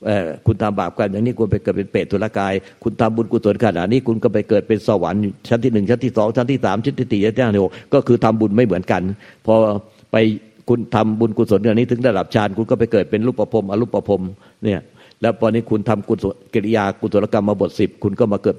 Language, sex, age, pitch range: Thai, male, 60-79, 100-115 Hz